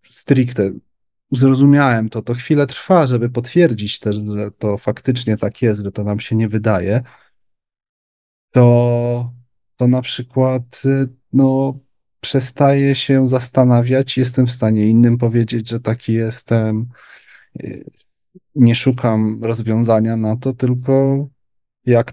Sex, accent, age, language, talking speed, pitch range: male, native, 30-49, Polish, 115 wpm, 110-135 Hz